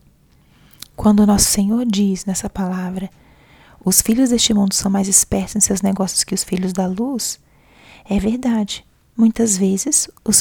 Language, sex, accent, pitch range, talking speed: Portuguese, female, Brazilian, 190-215 Hz, 155 wpm